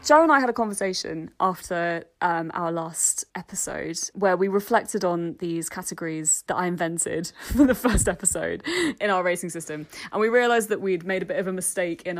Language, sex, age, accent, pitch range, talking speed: English, female, 20-39, British, 175-220 Hz, 195 wpm